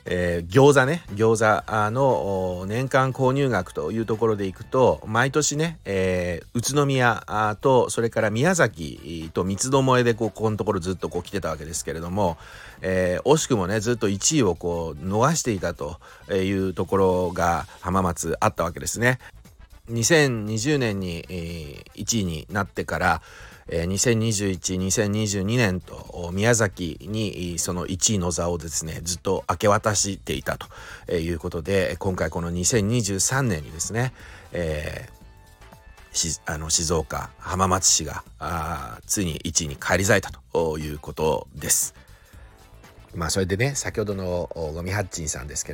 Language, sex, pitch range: Japanese, male, 85-110 Hz